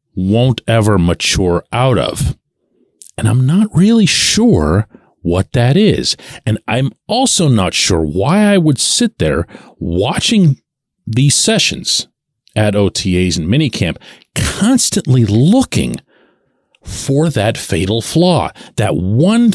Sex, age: male, 40-59